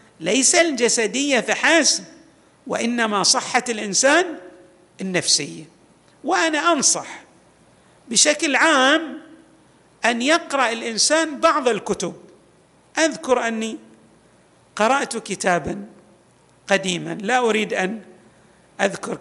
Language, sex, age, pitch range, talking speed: Arabic, male, 50-69, 185-275 Hz, 80 wpm